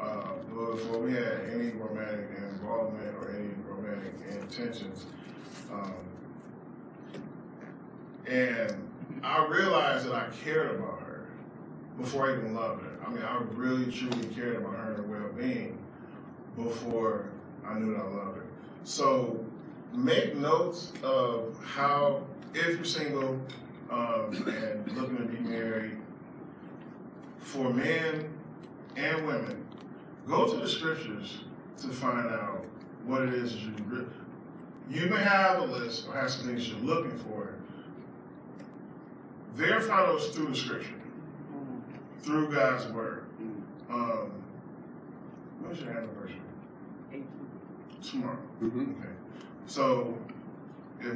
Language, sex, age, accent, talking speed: English, male, 20-39, American, 120 wpm